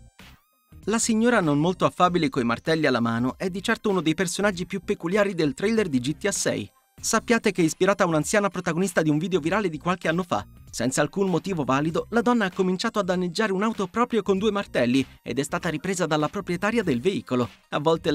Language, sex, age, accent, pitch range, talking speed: Italian, male, 30-49, native, 145-205 Hz, 205 wpm